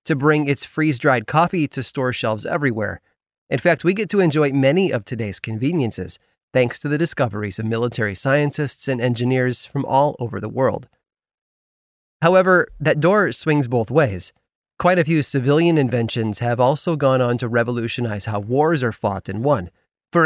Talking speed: 170 wpm